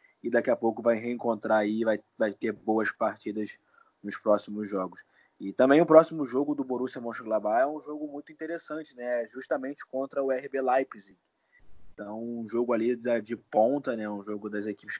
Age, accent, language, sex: 20-39, Brazilian, Portuguese, male